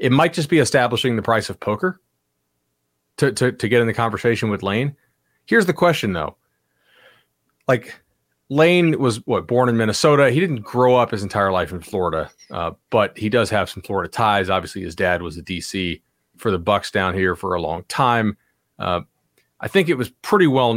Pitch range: 90-125 Hz